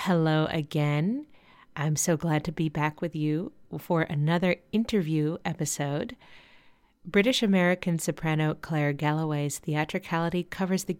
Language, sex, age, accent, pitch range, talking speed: English, female, 30-49, American, 155-195 Hz, 115 wpm